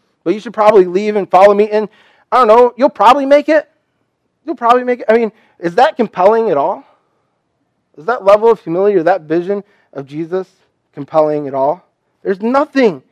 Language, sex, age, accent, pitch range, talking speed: English, male, 30-49, American, 145-195 Hz, 190 wpm